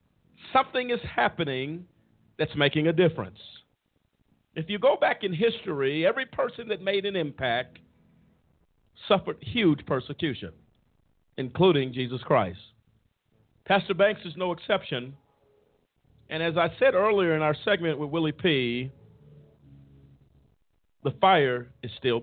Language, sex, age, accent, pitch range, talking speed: English, male, 50-69, American, 120-185 Hz, 120 wpm